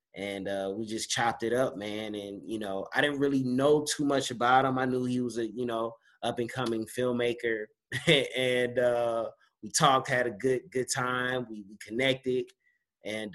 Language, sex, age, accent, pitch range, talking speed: English, male, 30-49, American, 120-150 Hz, 195 wpm